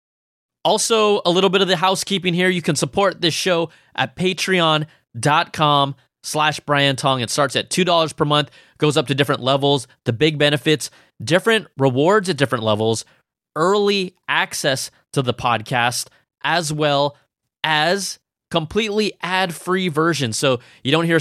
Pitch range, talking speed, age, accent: 135-175 Hz, 145 wpm, 20-39, American